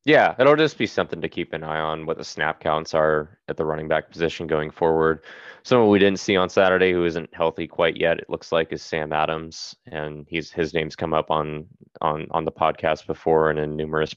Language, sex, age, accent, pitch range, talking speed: English, male, 20-39, American, 80-95 Hz, 235 wpm